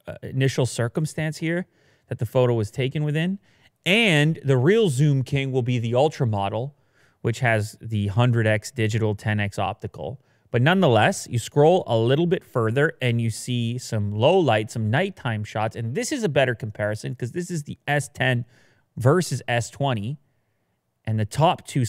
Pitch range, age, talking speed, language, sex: 110-145 Hz, 30-49, 165 wpm, English, male